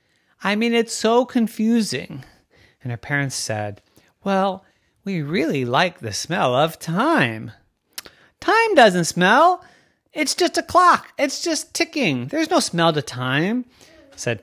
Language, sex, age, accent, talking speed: English, male, 30-49, American, 135 wpm